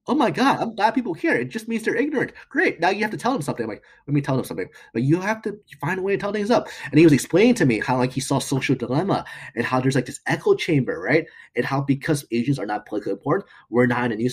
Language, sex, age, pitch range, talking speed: English, male, 30-49, 120-160 Hz, 300 wpm